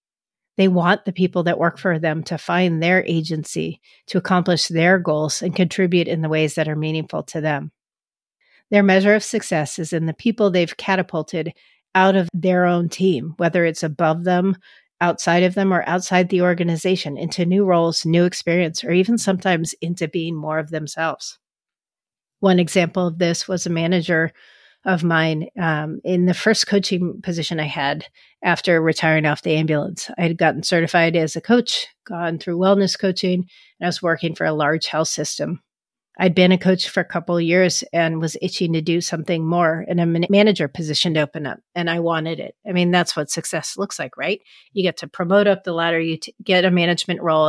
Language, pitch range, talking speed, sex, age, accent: English, 160-185 Hz, 195 wpm, female, 40-59, American